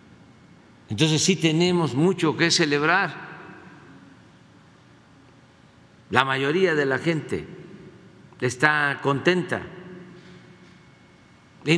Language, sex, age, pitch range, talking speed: Spanish, male, 50-69, 135-180 Hz, 70 wpm